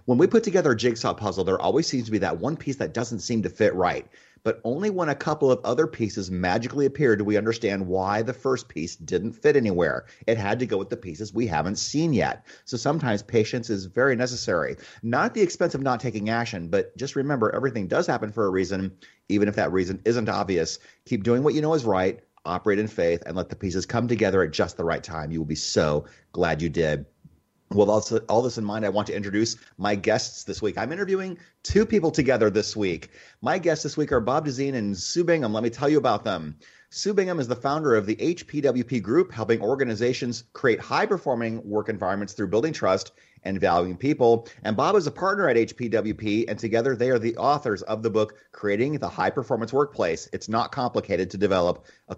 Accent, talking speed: American, 220 wpm